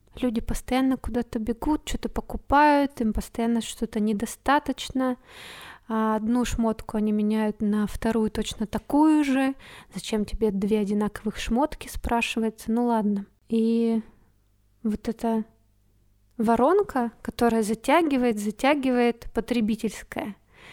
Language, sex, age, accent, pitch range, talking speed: Russian, female, 20-39, native, 215-245 Hz, 100 wpm